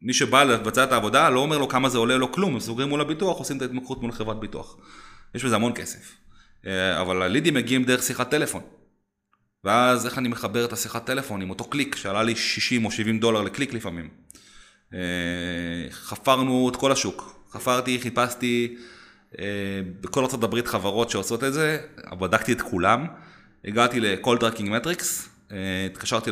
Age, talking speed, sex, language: 30-49, 160 wpm, male, Hebrew